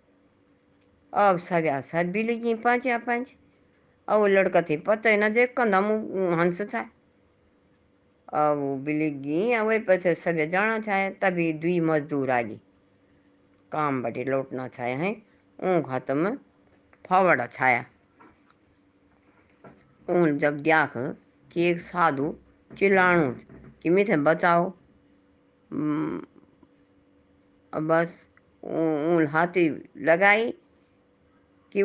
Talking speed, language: 75 wpm, Hindi